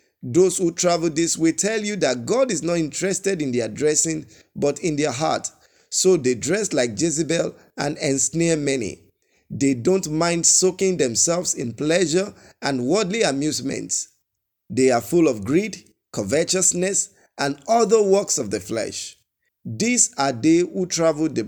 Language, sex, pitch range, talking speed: English, male, 150-190 Hz, 155 wpm